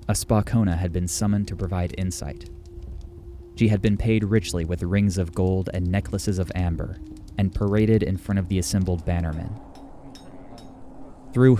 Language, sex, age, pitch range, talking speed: English, male, 20-39, 85-105 Hz, 155 wpm